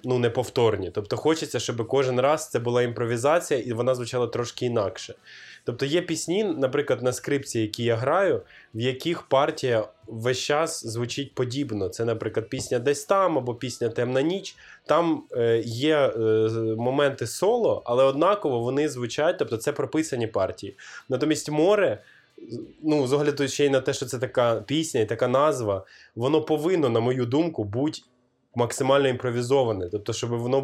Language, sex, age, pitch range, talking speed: Ukrainian, male, 20-39, 115-145 Hz, 155 wpm